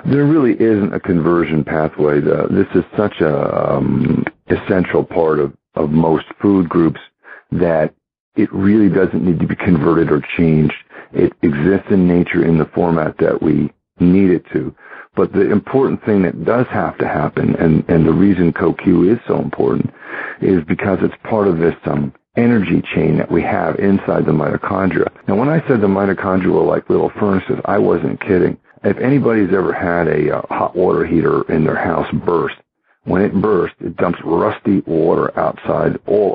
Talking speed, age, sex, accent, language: 180 wpm, 50-69, male, American, English